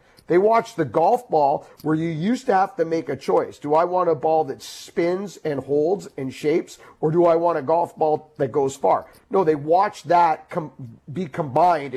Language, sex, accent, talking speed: English, male, American, 205 wpm